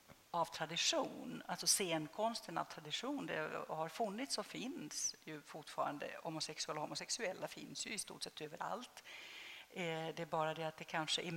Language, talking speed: Swedish, 165 wpm